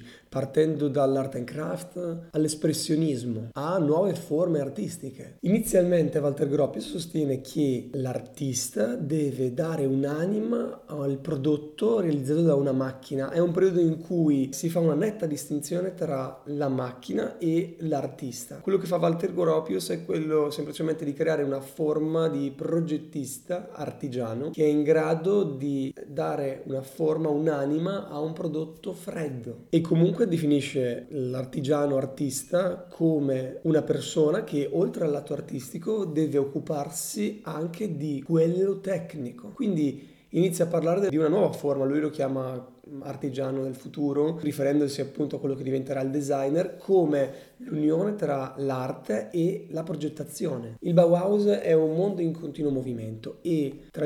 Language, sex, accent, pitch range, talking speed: Italian, male, native, 140-170 Hz, 140 wpm